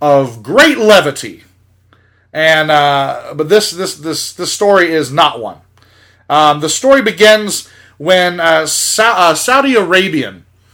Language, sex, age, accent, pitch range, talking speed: English, male, 30-49, American, 130-175 Hz, 135 wpm